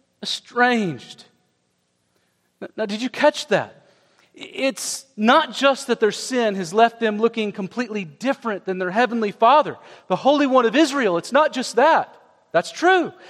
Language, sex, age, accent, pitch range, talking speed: English, male, 40-59, American, 140-225 Hz, 150 wpm